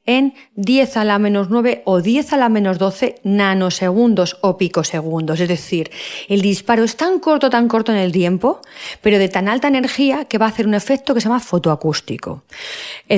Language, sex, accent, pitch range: Spanish, female, Spanish, 175-225 Hz